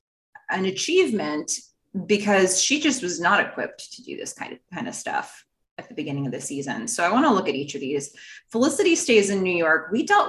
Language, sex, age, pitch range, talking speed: English, female, 20-39, 165-235 Hz, 220 wpm